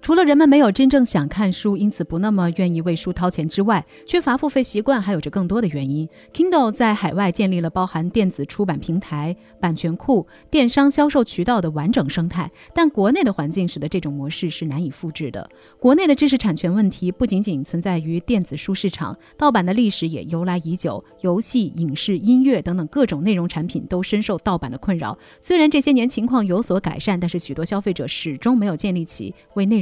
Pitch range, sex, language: 170-240 Hz, female, Chinese